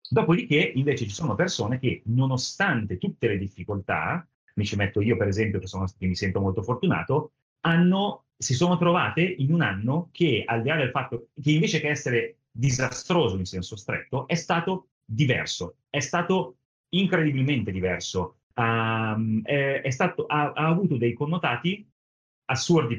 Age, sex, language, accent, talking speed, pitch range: 30-49, male, Italian, native, 160 wpm, 105-155 Hz